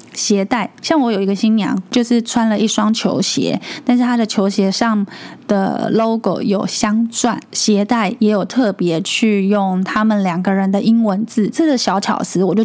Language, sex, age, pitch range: Chinese, female, 10-29, 205-245 Hz